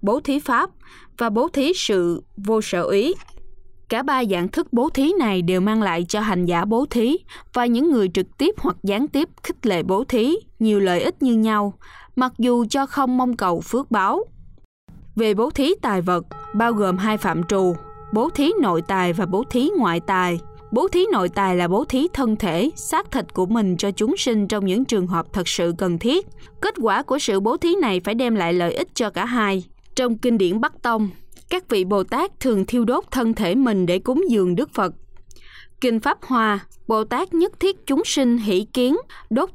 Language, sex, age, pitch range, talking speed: Vietnamese, female, 20-39, 190-265 Hz, 210 wpm